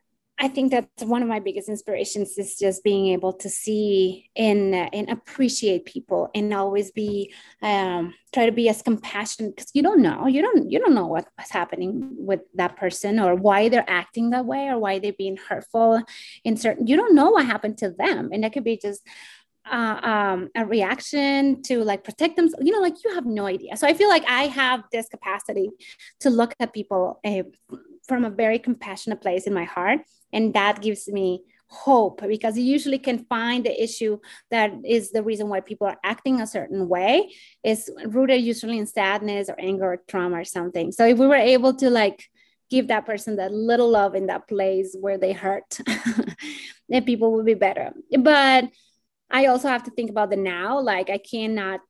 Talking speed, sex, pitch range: 200 wpm, female, 200-250 Hz